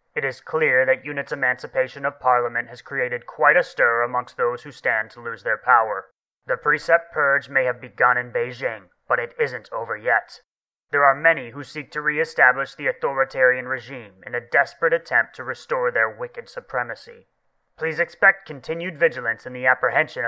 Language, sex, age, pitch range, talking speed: English, male, 30-49, 130-185 Hz, 180 wpm